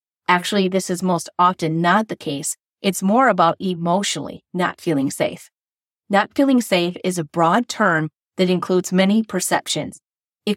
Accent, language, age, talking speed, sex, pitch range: American, English, 30-49, 155 wpm, female, 170-205 Hz